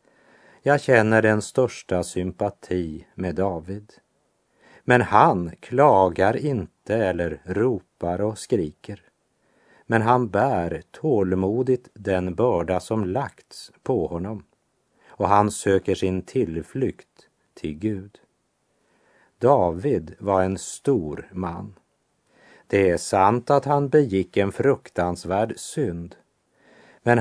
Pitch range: 90-120 Hz